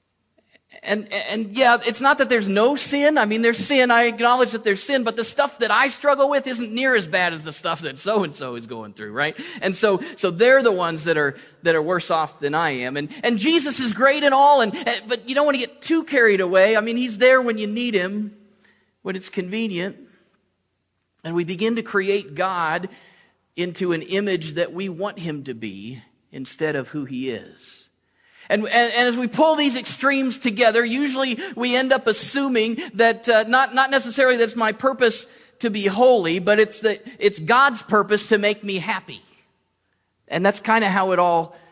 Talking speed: 205 wpm